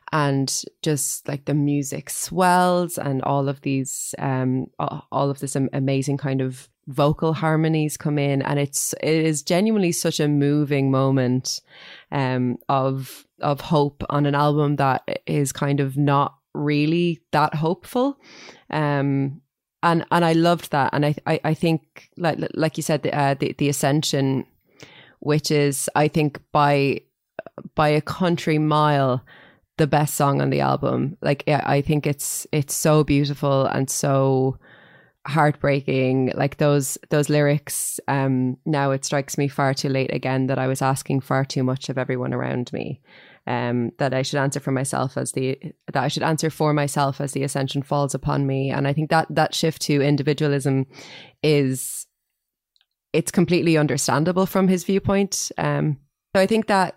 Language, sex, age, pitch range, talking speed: English, female, 20-39, 135-155 Hz, 165 wpm